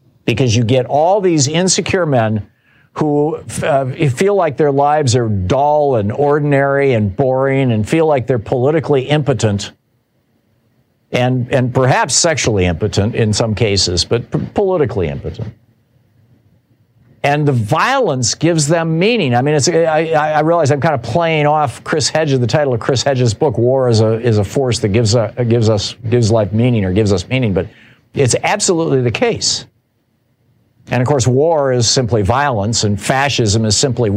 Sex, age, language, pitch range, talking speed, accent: male, 50-69, English, 115-145 Hz, 170 wpm, American